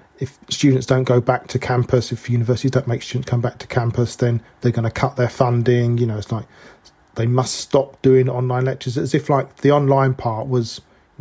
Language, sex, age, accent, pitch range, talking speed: English, male, 40-59, British, 115-135 Hz, 220 wpm